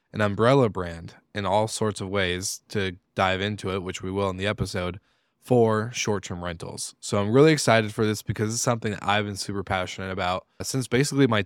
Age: 20-39